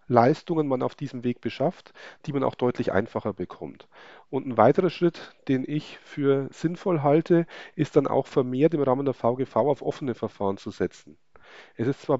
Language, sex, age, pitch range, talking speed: German, male, 40-59, 125-155 Hz, 180 wpm